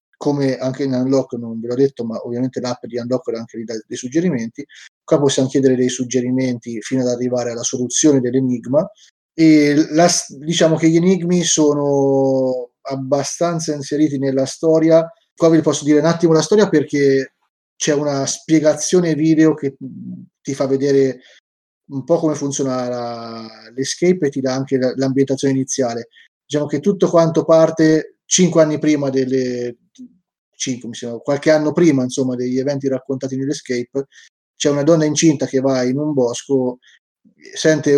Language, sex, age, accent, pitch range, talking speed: Italian, male, 30-49, native, 125-150 Hz, 155 wpm